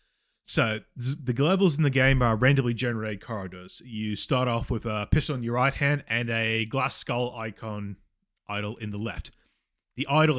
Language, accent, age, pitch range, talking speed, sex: English, Australian, 20-39, 105-130 Hz, 180 wpm, male